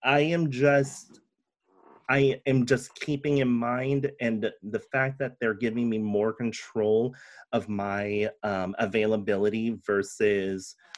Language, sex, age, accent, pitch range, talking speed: English, male, 30-49, American, 105-135 Hz, 125 wpm